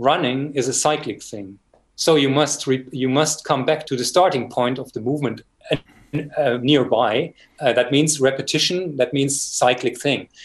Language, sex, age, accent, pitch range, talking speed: English, male, 30-49, German, 130-155 Hz, 180 wpm